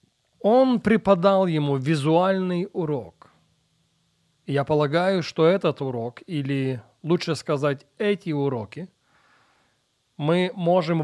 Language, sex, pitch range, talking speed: Russian, male, 140-180 Hz, 100 wpm